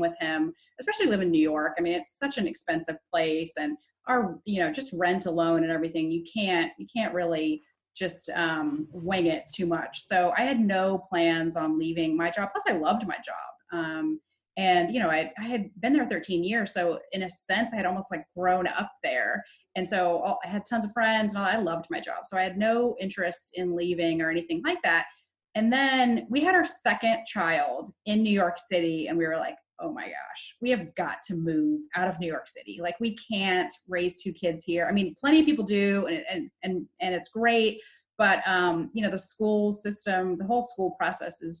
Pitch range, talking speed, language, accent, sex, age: 170-225 Hz, 220 wpm, English, American, female, 30-49